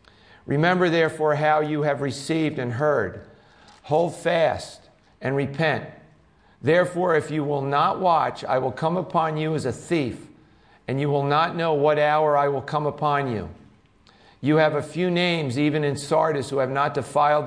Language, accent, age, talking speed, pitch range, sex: English, American, 50-69, 170 wpm, 130-160 Hz, male